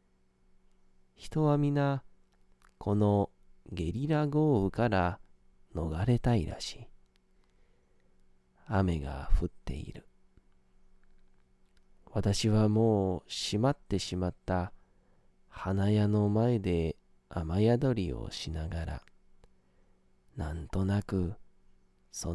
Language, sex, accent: Japanese, male, native